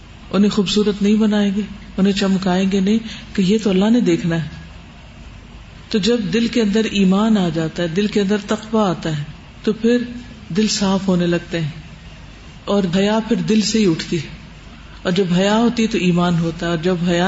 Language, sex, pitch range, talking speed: Urdu, female, 190-245 Hz, 200 wpm